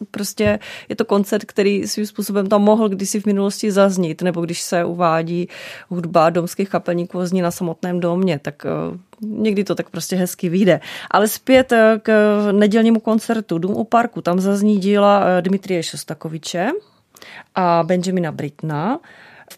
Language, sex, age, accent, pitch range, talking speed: Czech, female, 30-49, native, 175-205 Hz, 145 wpm